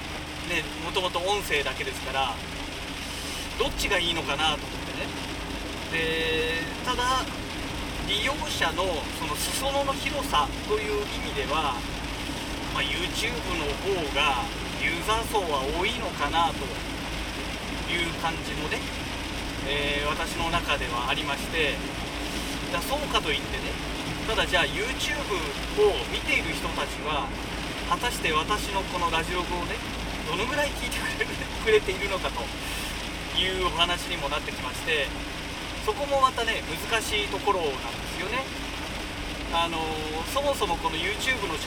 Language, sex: Japanese, male